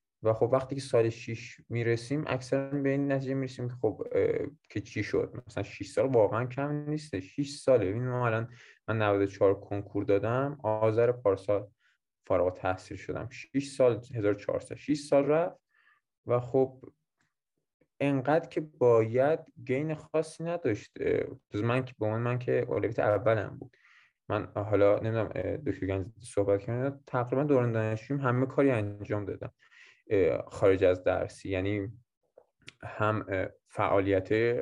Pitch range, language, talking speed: 100-130 Hz, Persian, 130 wpm